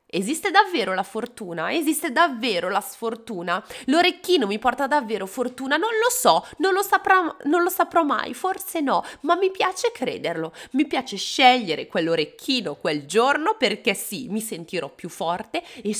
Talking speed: 160 wpm